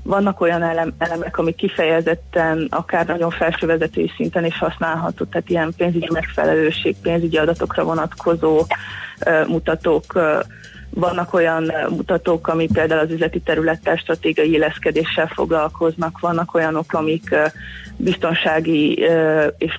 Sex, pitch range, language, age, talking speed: female, 155-170 Hz, Hungarian, 30-49, 105 wpm